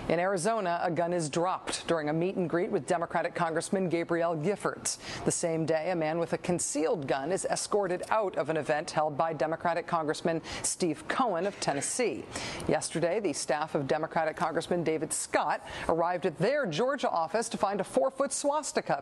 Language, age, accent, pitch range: English, 40-59, American, 160-205 Hz